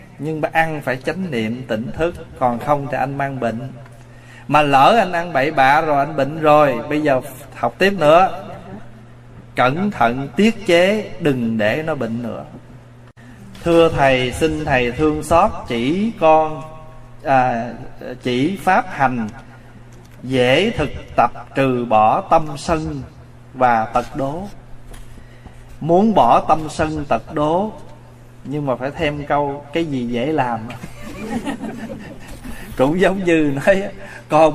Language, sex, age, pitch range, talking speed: Vietnamese, male, 20-39, 125-165 Hz, 140 wpm